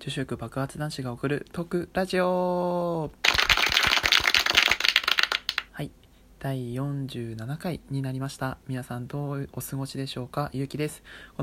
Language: Japanese